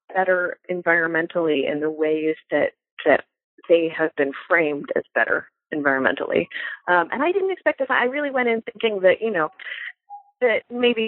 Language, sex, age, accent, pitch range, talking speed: English, female, 30-49, American, 165-245 Hz, 160 wpm